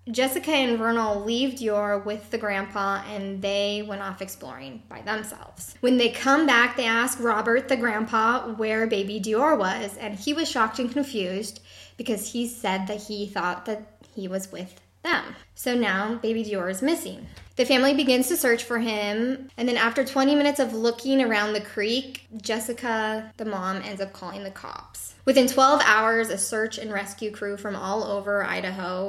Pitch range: 195-235 Hz